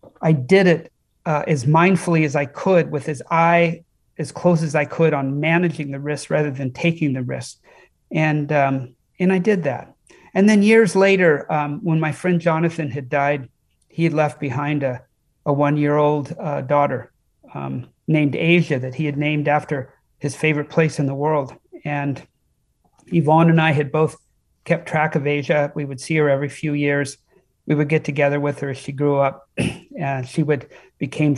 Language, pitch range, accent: English, 140-160 Hz, American